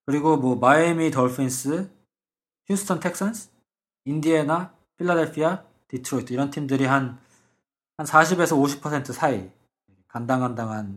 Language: Korean